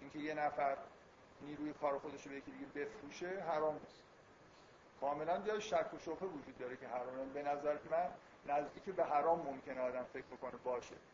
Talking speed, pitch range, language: 180 wpm, 135-160 Hz, Persian